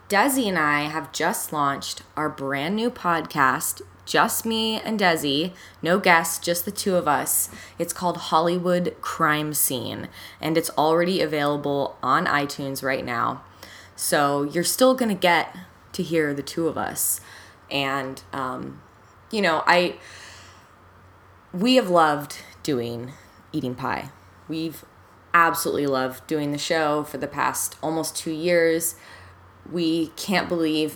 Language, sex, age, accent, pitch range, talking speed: English, female, 20-39, American, 140-180 Hz, 140 wpm